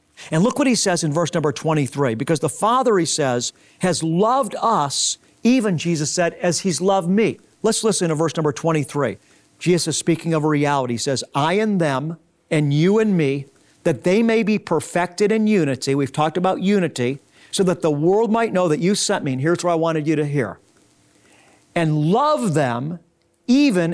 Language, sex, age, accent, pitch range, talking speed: English, male, 50-69, American, 160-230 Hz, 195 wpm